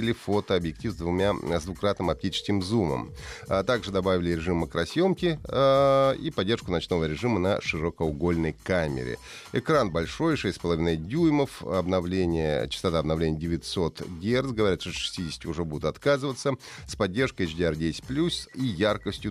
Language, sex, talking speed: Russian, male, 125 wpm